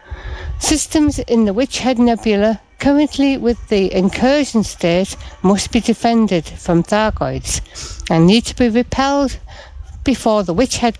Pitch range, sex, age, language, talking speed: 190-250 Hz, female, 60-79, English, 135 wpm